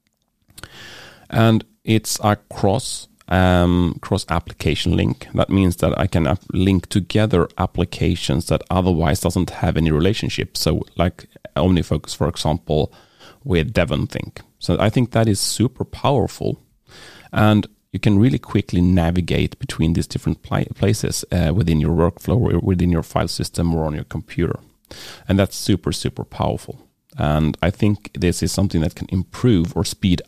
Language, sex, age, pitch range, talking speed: English, male, 30-49, 80-105 Hz, 150 wpm